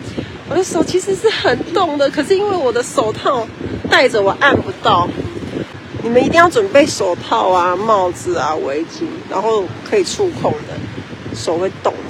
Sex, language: female, Chinese